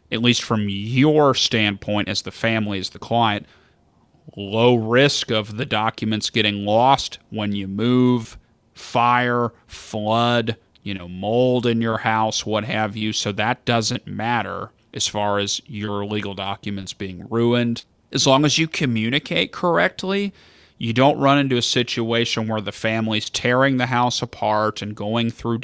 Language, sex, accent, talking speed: English, male, American, 155 wpm